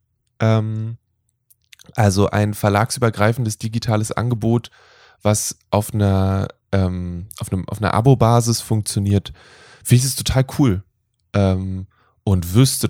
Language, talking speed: German, 100 wpm